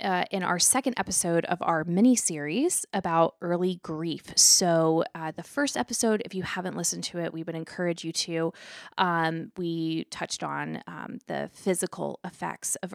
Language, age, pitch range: English, 20-39, 160-195 Hz